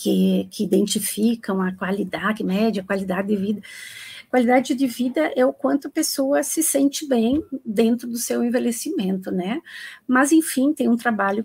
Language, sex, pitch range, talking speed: Portuguese, female, 205-255 Hz, 155 wpm